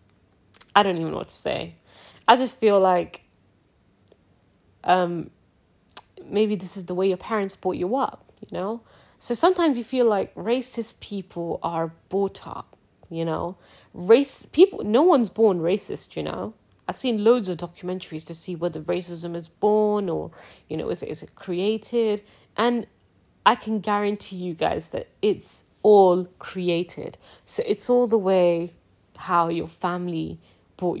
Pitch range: 165-210 Hz